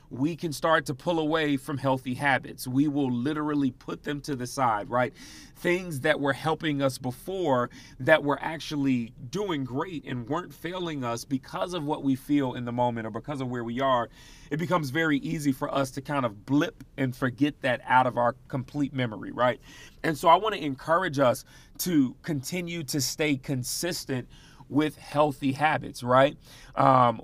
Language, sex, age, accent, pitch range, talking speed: English, male, 30-49, American, 130-155 Hz, 185 wpm